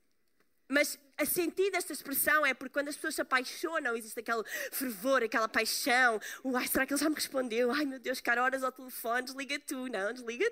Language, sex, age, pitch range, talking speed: Portuguese, female, 20-39, 280-370 Hz, 195 wpm